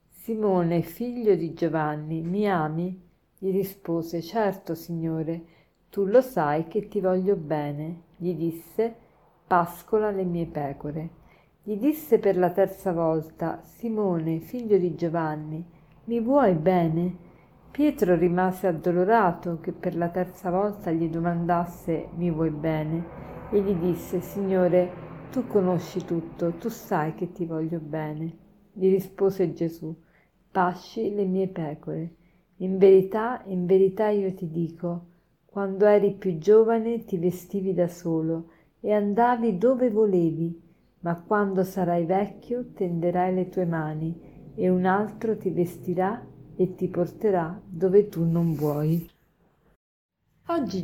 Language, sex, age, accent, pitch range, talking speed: Italian, female, 50-69, native, 165-200 Hz, 125 wpm